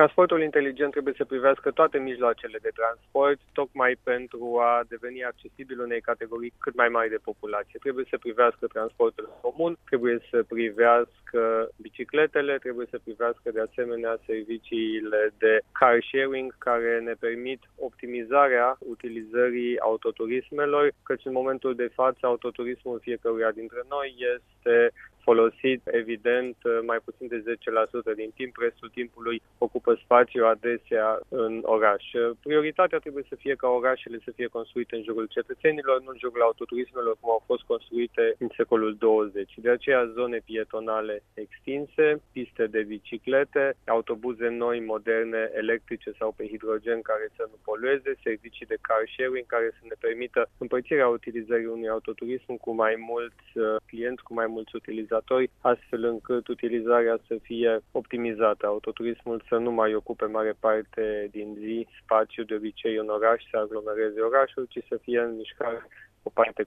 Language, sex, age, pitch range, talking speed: Romanian, male, 20-39, 115-130 Hz, 145 wpm